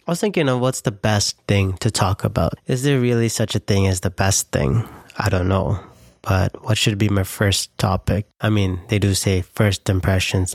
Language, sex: English, male